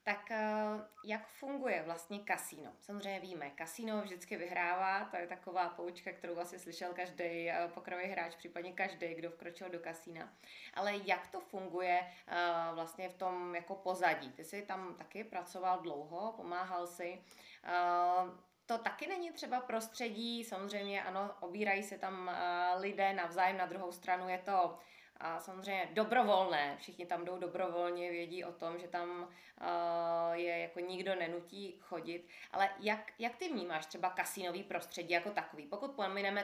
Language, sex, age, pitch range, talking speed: Czech, female, 20-39, 175-195 Hz, 150 wpm